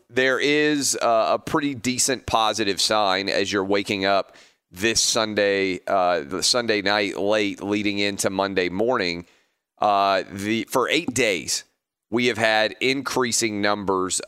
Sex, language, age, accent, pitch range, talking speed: male, English, 30-49, American, 100-115 Hz, 135 wpm